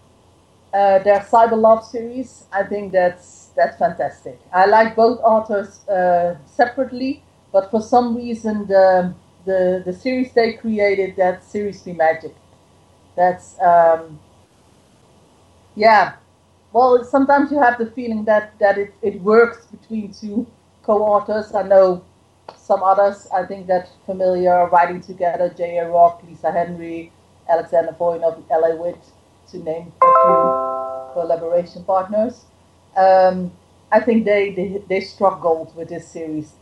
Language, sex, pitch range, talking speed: English, female, 170-210 Hz, 135 wpm